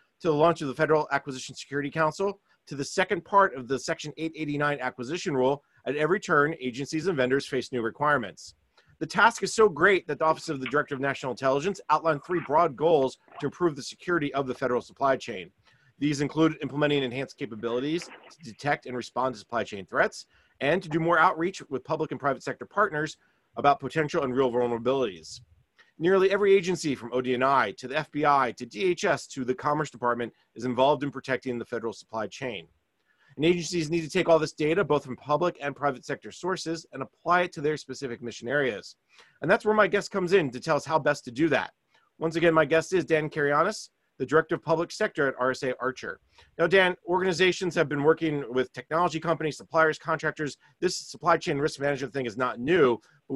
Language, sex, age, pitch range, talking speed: English, male, 30-49, 130-165 Hz, 200 wpm